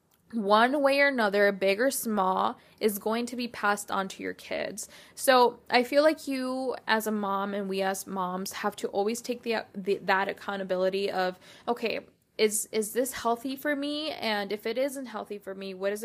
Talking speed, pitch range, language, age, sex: 200 wpm, 190-220 Hz, English, 10-29, female